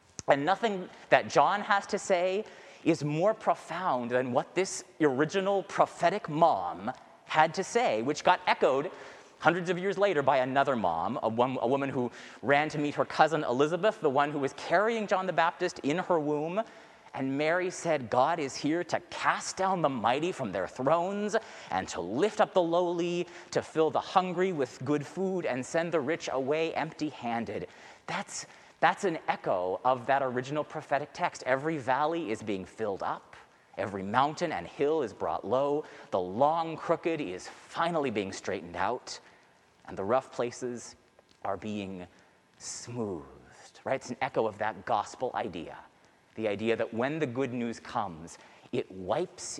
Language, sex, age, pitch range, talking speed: English, male, 30-49, 125-175 Hz, 165 wpm